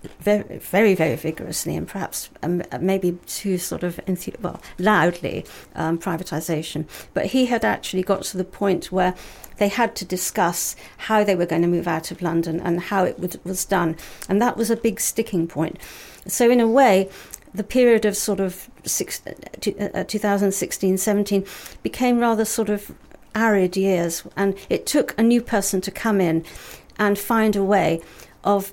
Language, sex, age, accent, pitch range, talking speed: English, female, 50-69, British, 180-215 Hz, 170 wpm